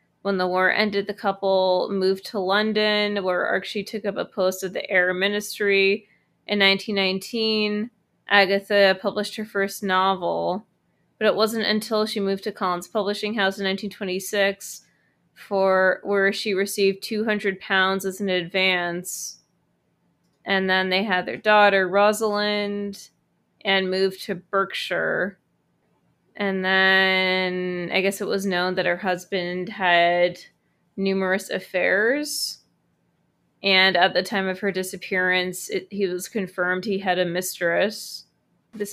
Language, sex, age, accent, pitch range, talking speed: English, female, 20-39, American, 185-210 Hz, 135 wpm